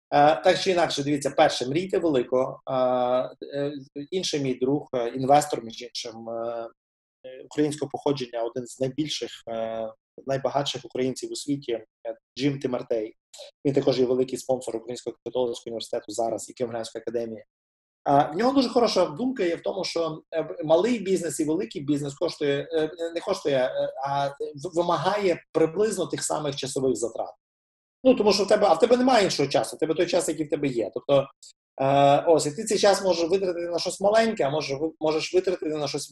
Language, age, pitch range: Russian, 30-49, 125-170 Hz